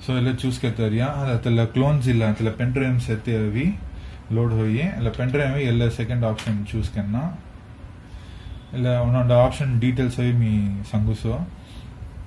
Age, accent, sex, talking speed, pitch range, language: 30-49, Indian, male, 115 wpm, 105-125 Hz, English